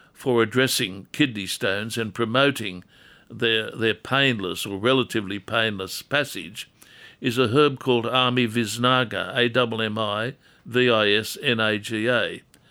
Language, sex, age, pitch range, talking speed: English, male, 60-79, 115-135 Hz, 95 wpm